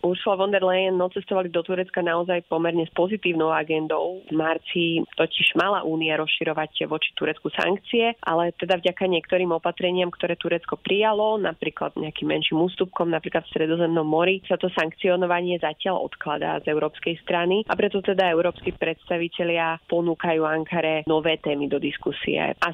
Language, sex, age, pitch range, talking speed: Slovak, female, 30-49, 160-180 Hz, 150 wpm